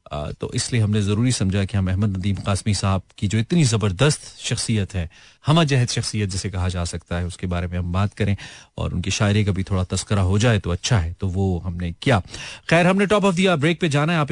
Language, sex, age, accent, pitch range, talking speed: Hindi, male, 30-49, native, 100-150 Hz, 235 wpm